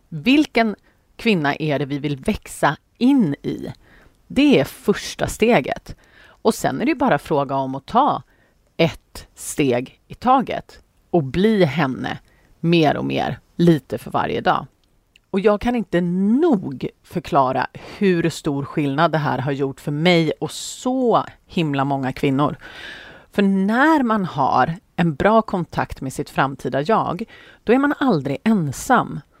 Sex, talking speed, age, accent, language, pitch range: female, 145 wpm, 30-49, native, Swedish, 145-225 Hz